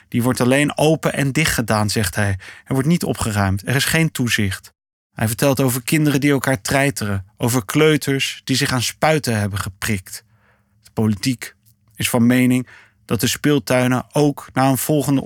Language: Dutch